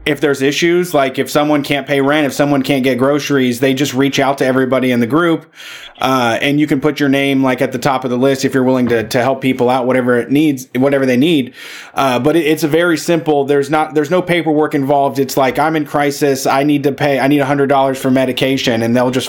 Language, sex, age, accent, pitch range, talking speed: English, male, 20-39, American, 130-155 Hz, 250 wpm